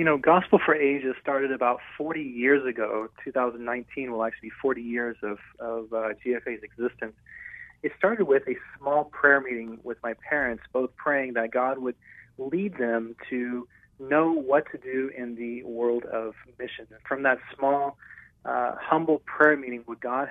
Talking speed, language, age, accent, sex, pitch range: 170 wpm, English, 30-49, American, male, 120-145 Hz